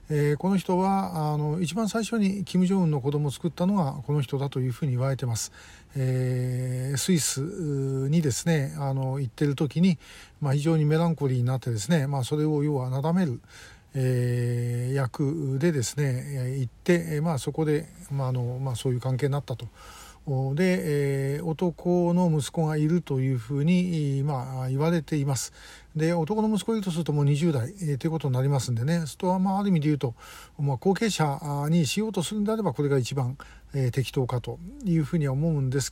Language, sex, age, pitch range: Japanese, male, 50-69, 135-175 Hz